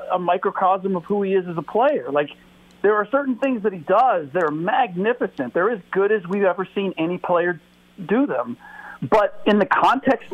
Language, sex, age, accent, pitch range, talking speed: English, male, 50-69, American, 145-220 Hz, 205 wpm